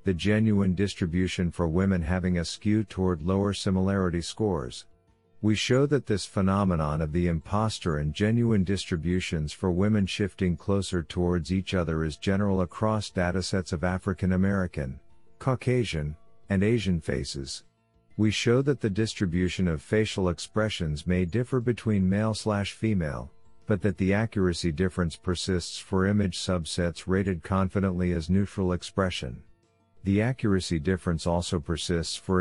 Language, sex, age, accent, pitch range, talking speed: English, male, 50-69, American, 90-105 Hz, 135 wpm